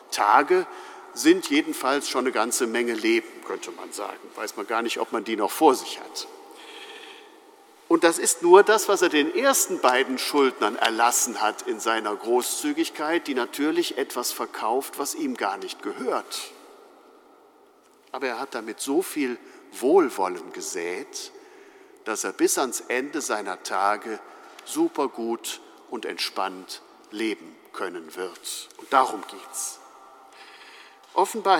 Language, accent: German, German